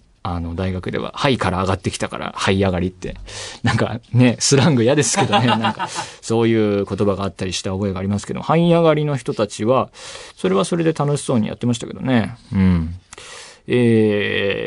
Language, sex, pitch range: Japanese, male, 100-135 Hz